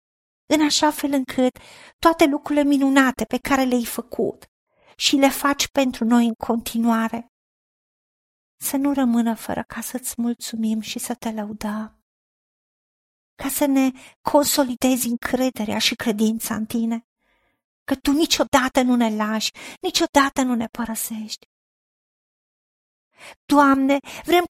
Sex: female